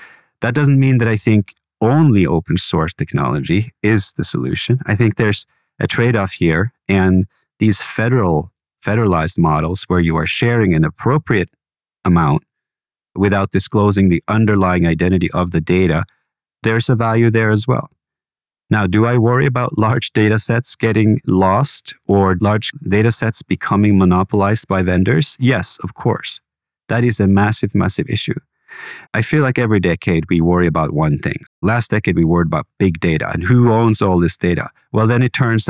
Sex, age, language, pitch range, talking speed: male, 40-59, English, 90-120 Hz, 165 wpm